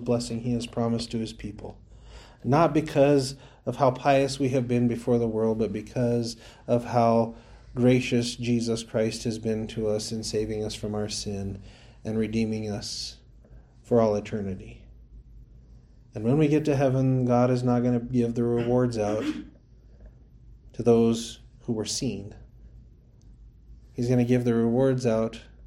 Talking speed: 160 wpm